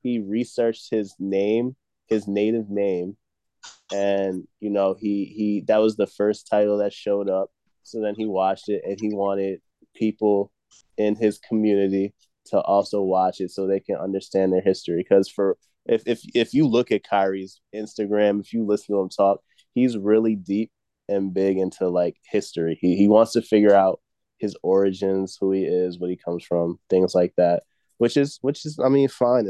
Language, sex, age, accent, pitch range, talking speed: English, male, 20-39, American, 95-110 Hz, 185 wpm